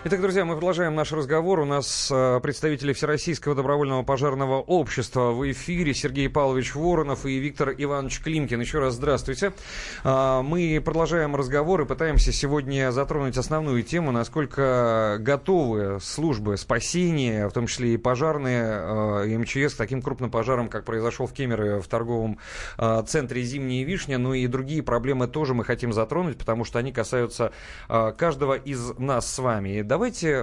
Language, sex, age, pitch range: Russian, male, 30-49, 115-150 Hz